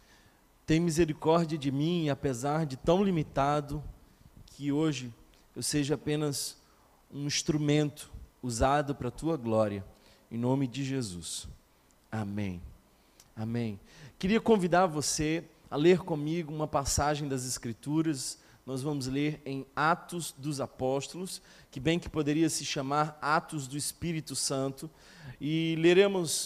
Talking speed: 125 wpm